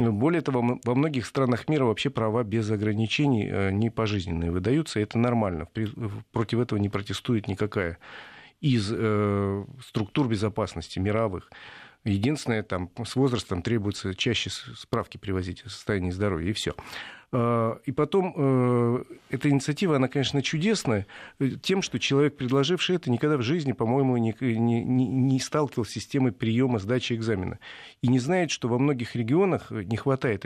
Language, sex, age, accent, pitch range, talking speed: Russian, male, 40-59, native, 110-140 Hz, 140 wpm